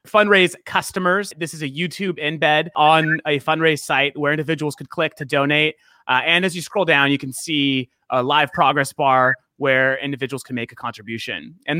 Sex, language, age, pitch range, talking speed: male, English, 30-49, 135-165 Hz, 190 wpm